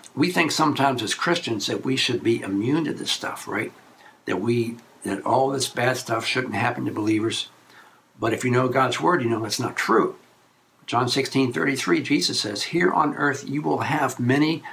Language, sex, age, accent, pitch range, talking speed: English, male, 60-79, American, 120-140 Hz, 195 wpm